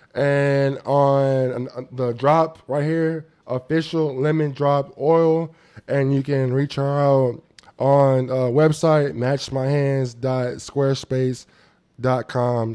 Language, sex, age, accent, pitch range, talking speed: English, male, 20-39, American, 115-135 Hz, 95 wpm